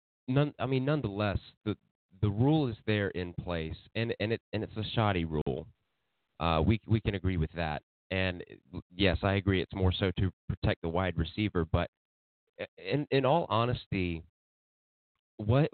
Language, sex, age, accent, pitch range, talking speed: English, male, 30-49, American, 90-110 Hz, 170 wpm